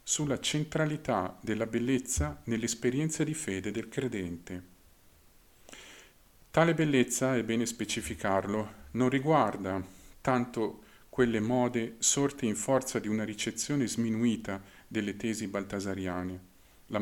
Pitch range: 100-130 Hz